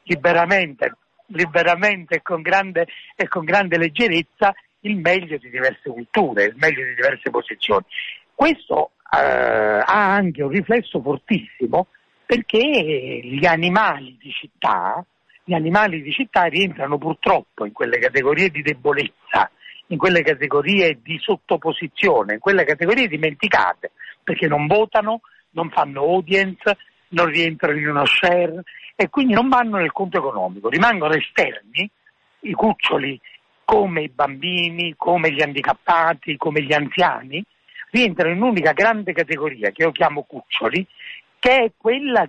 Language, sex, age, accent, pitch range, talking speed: Italian, male, 60-79, native, 150-200 Hz, 130 wpm